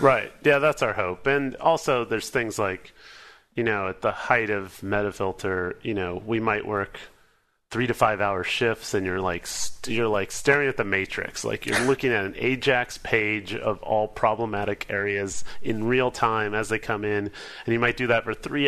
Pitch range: 90-115 Hz